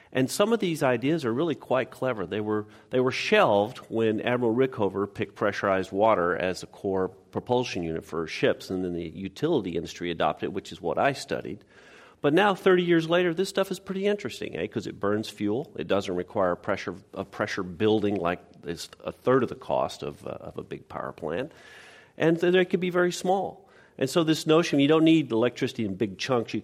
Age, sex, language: 40-59, male, English